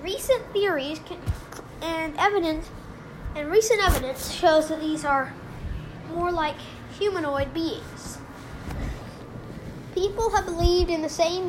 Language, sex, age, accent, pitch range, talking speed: English, female, 10-29, American, 280-365 Hz, 110 wpm